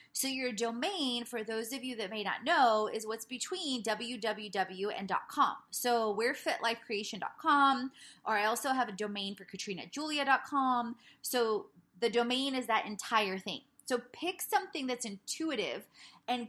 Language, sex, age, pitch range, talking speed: English, female, 20-39, 210-265 Hz, 150 wpm